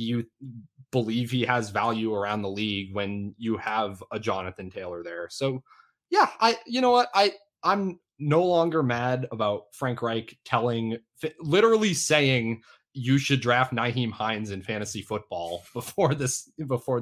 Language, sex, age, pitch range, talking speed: English, male, 20-39, 110-150 Hz, 150 wpm